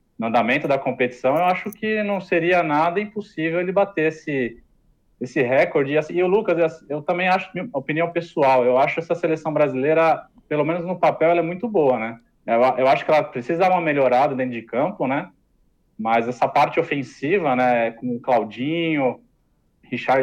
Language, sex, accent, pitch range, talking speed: Portuguese, male, Brazilian, 125-165 Hz, 185 wpm